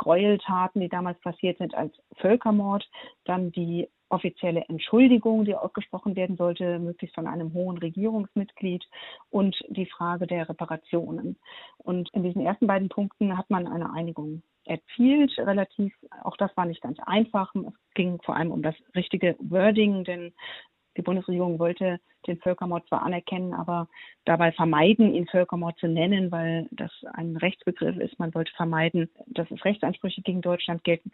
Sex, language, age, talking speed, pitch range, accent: female, German, 40-59, 155 wpm, 170-200 Hz, German